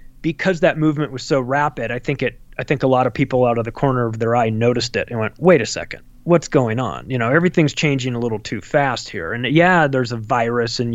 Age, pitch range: 30-49, 125-165 Hz